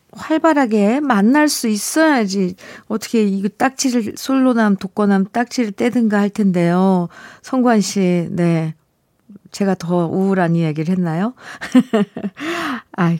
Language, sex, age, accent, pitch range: Korean, female, 50-69, native, 180-265 Hz